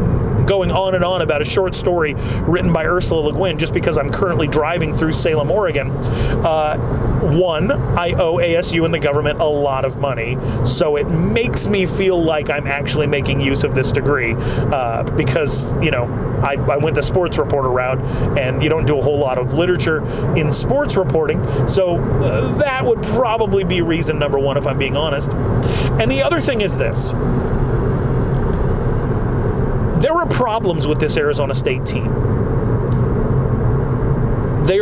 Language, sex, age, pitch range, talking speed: English, male, 30-49, 125-150 Hz, 165 wpm